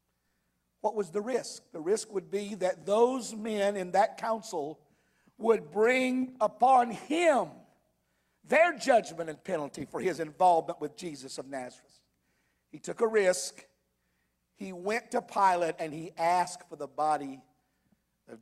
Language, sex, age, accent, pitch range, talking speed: English, male, 50-69, American, 185-295 Hz, 145 wpm